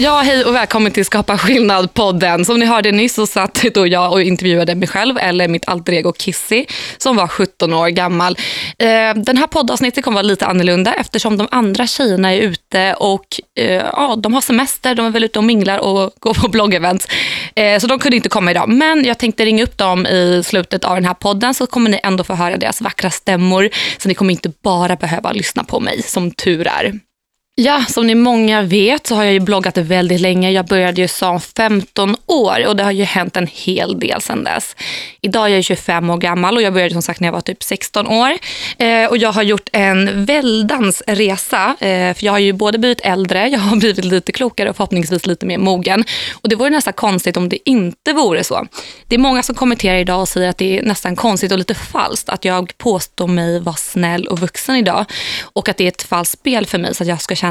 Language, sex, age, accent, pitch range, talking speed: Swedish, female, 20-39, native, 180-230 Hz, 225 wpm